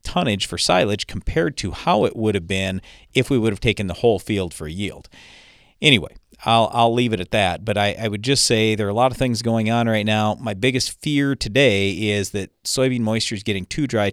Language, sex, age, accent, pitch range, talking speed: English, male, 40-59, American, 100-115 Hz, 235 wpm